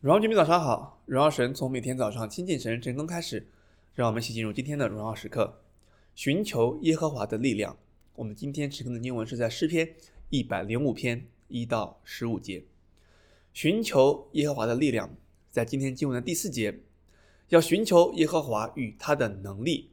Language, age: Chinese, 20-39